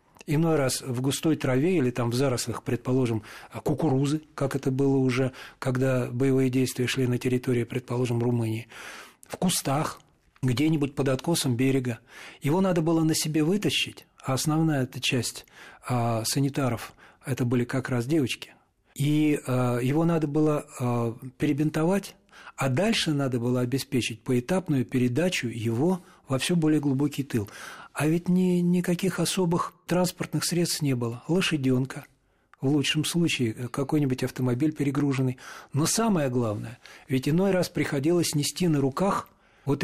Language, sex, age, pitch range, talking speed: Russian, male, 40-59, 130-160 Hz, 135 wpm